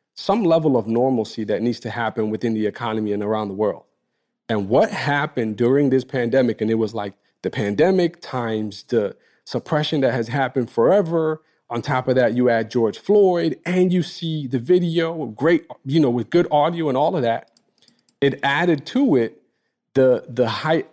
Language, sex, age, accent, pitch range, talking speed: English, male, 40-59, American, 115-160 Hz, 185 wpm